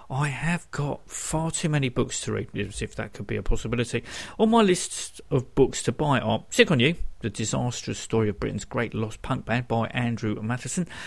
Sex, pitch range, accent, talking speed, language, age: male, 105-150 Hz, British, 210 wpm, English, 50-69